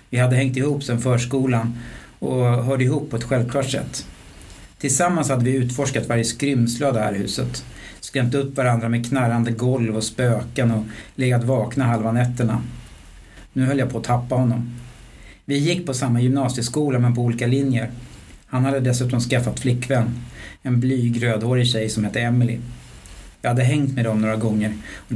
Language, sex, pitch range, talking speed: Swedish, male, 115-130 Hz, 170 wpm